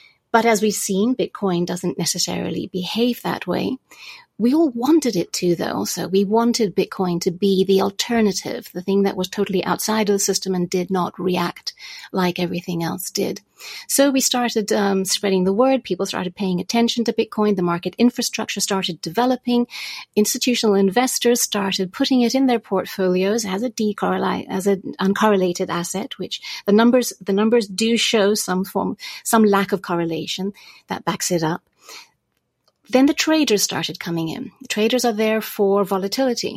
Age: 30-49